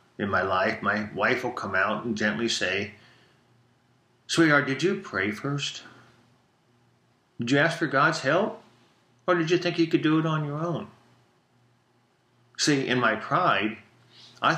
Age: 50-69